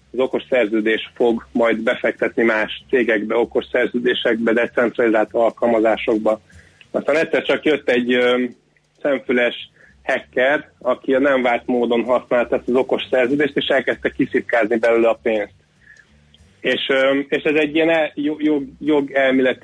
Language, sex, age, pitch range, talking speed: Hungarian, male, 30-49, 120-140 Hz, 130 wpm